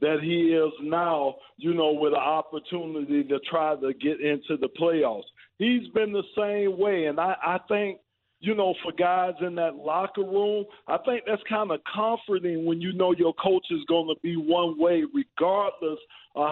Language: English